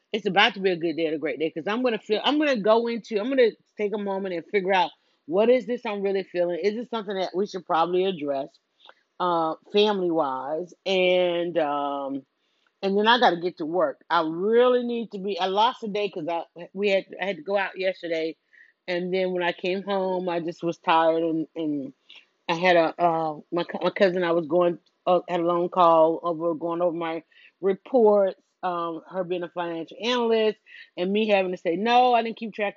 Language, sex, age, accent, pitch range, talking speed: English, female, 30-49, American, 175-235 Hz, 225 wpm